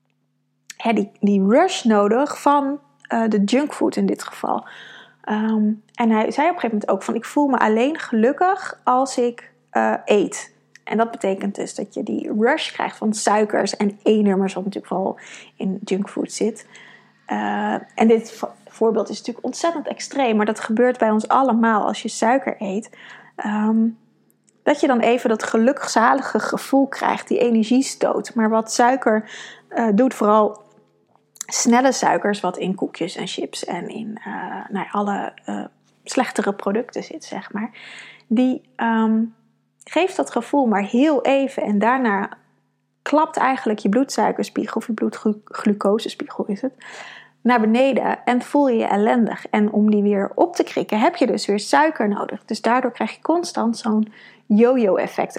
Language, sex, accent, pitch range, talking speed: Dutch, female, Dutch, 210-255 Hz, 160 wpm